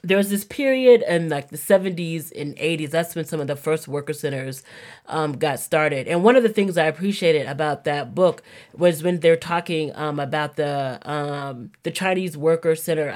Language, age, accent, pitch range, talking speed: English, 30-49, American, 155-200 Hz, 195 wpm